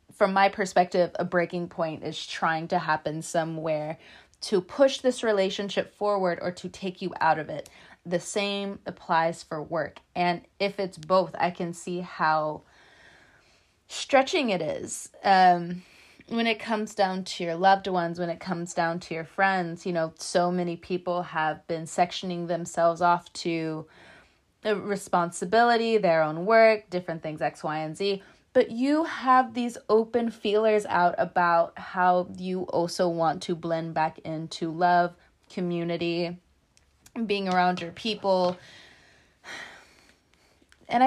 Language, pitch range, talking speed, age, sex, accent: English, 165-205 Hz, 145 wpm, 20-39, female, American